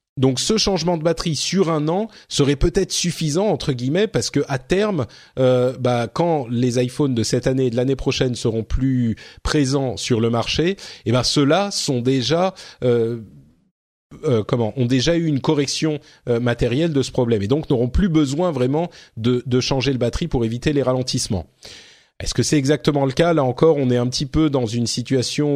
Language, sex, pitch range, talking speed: French, male, 120-155 Hz, 195 wpm